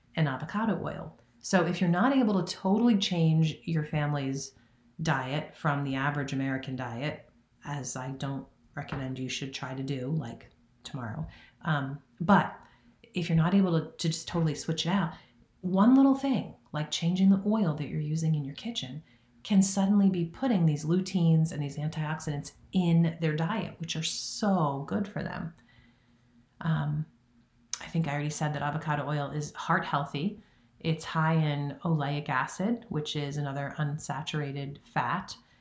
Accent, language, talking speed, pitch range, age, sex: American, English, 160 wpm, 140-180 Hz, 40-59, female